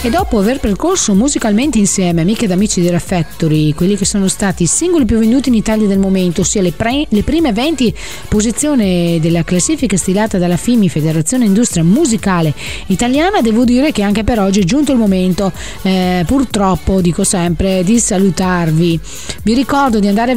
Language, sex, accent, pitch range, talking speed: Italian, female, native, 185-245 Hz, 175 wpm